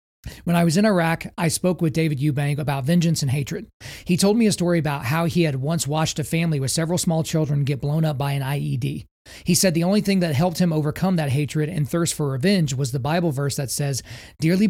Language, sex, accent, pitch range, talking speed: English, male, American, 145-175 Hz, 240 wpm